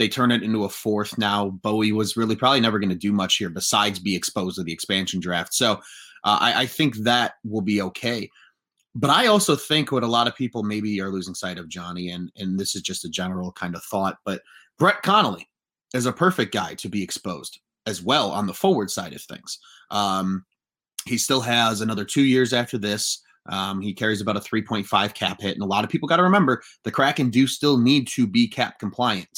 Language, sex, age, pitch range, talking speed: English, male, 30-49, 100-140 Hz, 225 wpm